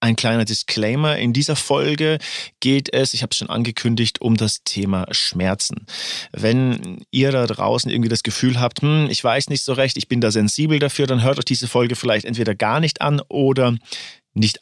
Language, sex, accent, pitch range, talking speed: German, male, German, 110-135 Hz, 195 wpm